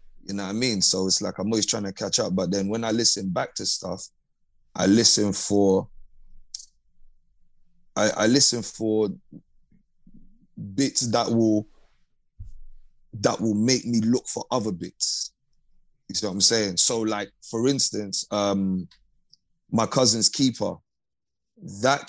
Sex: male